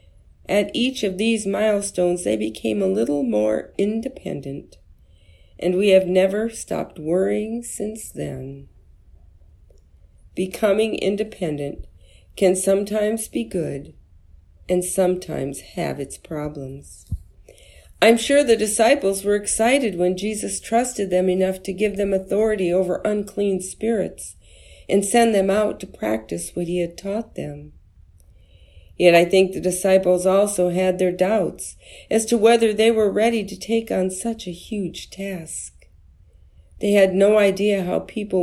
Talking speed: 135 wpm